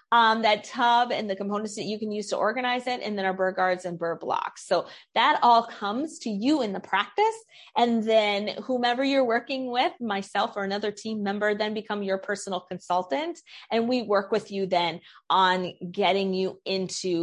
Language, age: English, 30-49